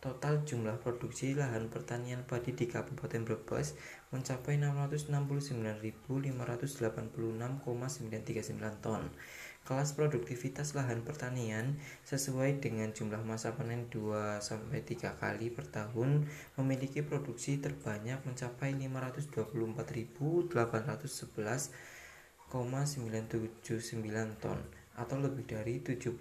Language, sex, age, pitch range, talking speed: Indonesian, male, 20-39, 110-130 Hz, 80 wpm